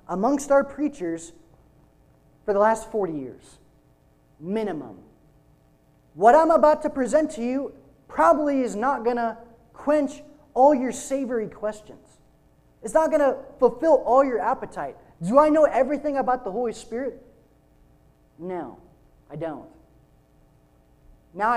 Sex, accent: male, American